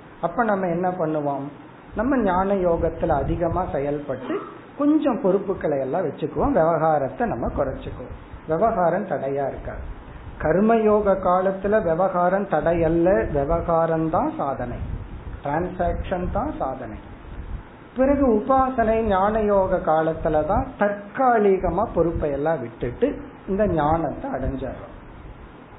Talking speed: 90 wpm